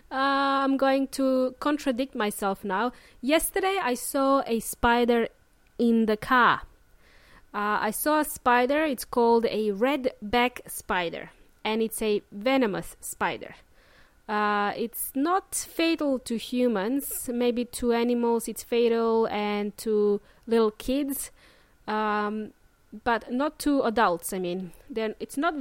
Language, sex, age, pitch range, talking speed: English, female, 20-39, 220-290 Hz, 130 wpm